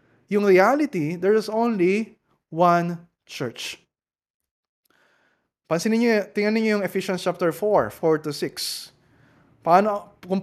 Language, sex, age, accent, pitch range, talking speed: Filipino, male, 20-39, native, 160-205 Hz, 115 wpm